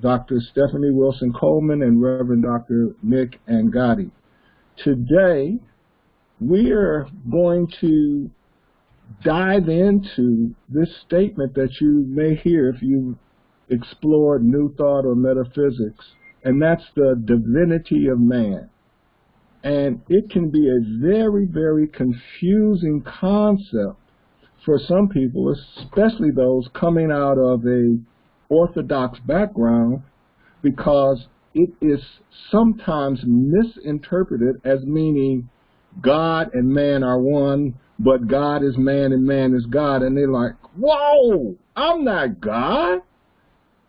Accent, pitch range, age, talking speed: American, 130-170 Hz, 50-69, 110 wpm